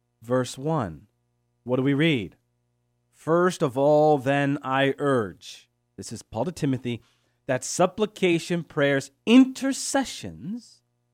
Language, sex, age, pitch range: English, male, 30-49, 120-180 Hz